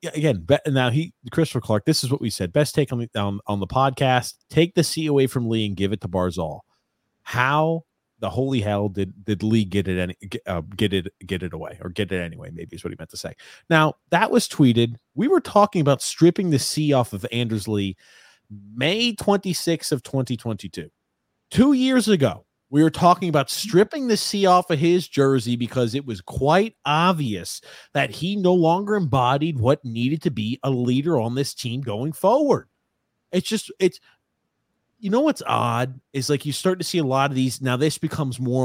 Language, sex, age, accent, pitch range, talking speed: English, male, 30-49, American, 110-165 Hz, 205 wpm